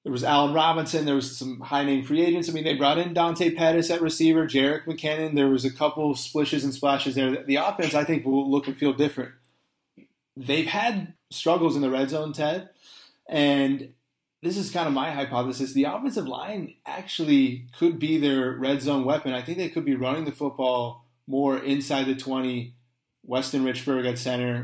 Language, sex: English, male